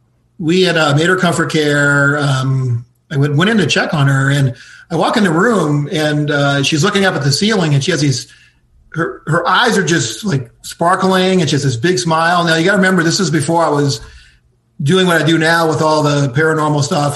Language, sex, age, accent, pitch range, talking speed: English, male, 40-59, American, 145-180 Hz, 230 wpm